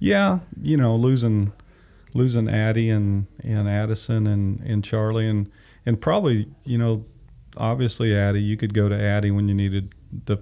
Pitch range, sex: 100-115 Hz, male